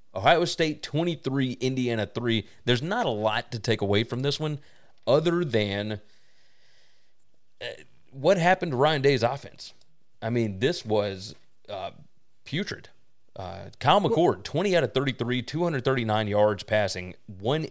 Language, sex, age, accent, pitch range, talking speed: English, male, 30-49, American, 105-145 Hz, 135 wpm